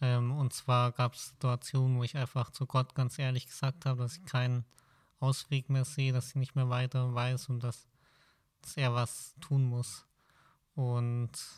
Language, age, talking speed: German, 20-39, 175 wpm